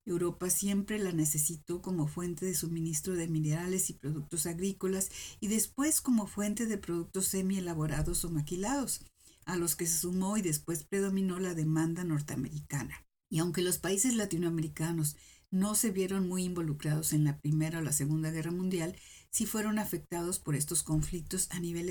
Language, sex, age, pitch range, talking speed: Spanish, female, 50-69, 155-190 Hz, 160 wpm